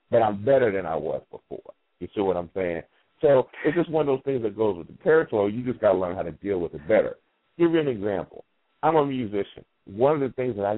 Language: English